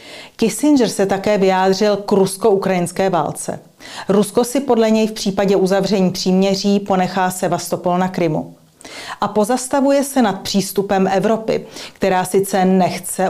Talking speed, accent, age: 125 wpm, native, 40-59